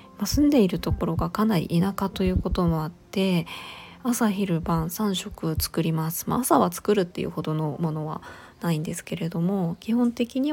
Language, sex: Japanese, female